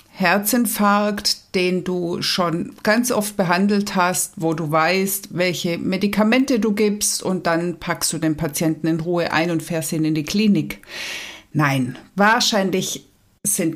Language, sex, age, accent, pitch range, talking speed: German, female, 60-79, German, 170-225 Hz, 145 wpm